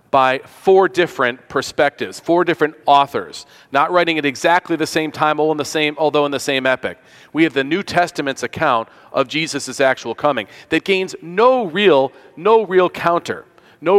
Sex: male